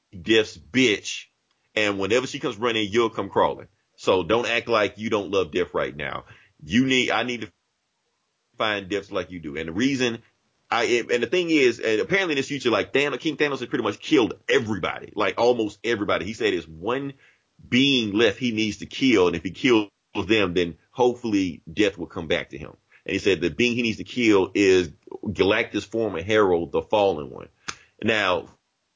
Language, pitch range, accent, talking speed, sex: English, 105-135 Hz, American, 195 wpm, male